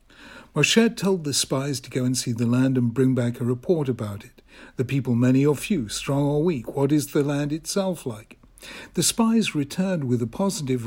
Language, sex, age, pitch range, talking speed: English, male, 60-79, 130-195 Hz, 205 wpm